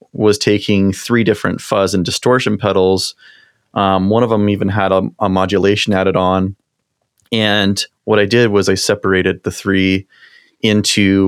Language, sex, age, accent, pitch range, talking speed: English, male, 30-49, American, 95-105 Hz, 155 wpm